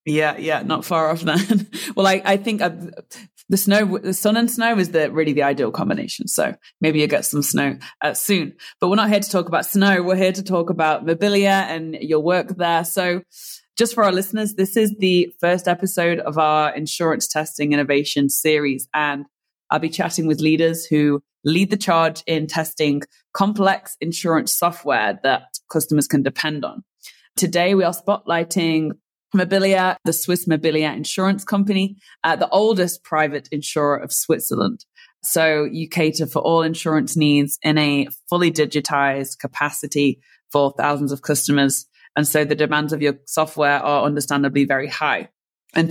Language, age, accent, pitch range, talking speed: English, 20-39, British, 150-180 Hz, 170 wpm